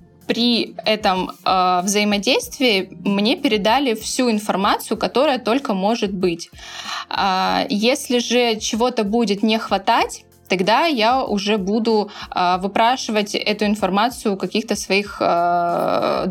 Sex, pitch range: female, 195-245 Hz